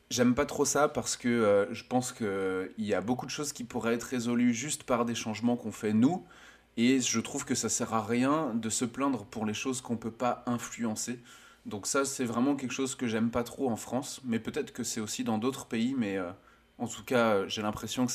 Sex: male